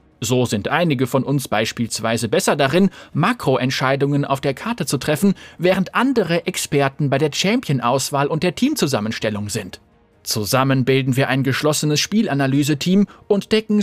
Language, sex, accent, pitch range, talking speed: German, male, German, 120-190 Hz, 140 wpm